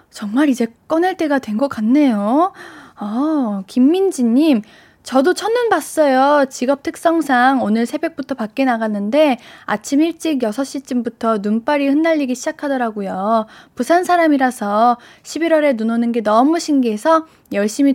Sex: female